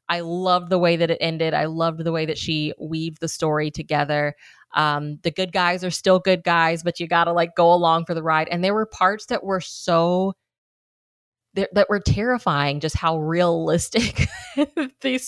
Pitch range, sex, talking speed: 160-200 Hz, female, 190 wpm